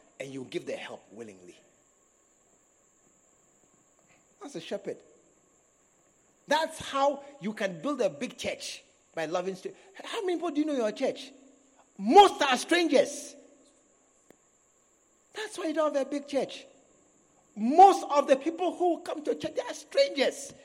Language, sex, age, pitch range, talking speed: English, male, 50-69, 190-300 Hz, 140 wpm